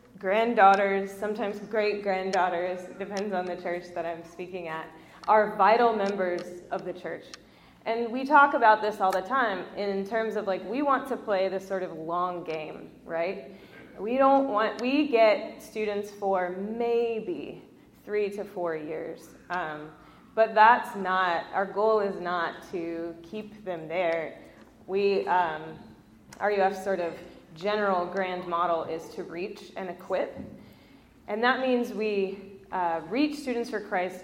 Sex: female